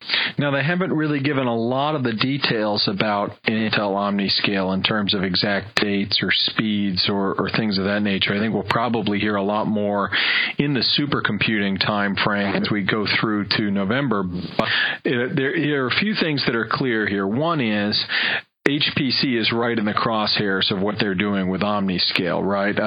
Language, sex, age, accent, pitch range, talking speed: English, male, 40-59, American, 105-120 Hz, 185 wpm